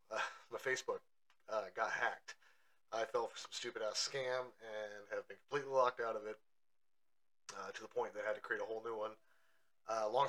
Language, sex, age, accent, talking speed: English, male, 30-49, American, 210 wpm